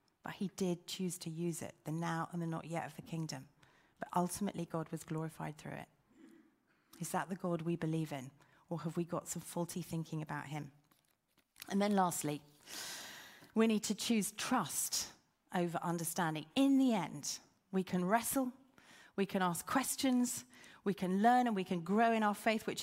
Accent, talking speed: British, 185 wpm